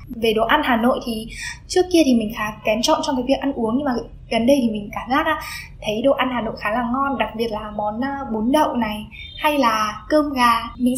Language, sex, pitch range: Vietnamese, female, 225-295 Hz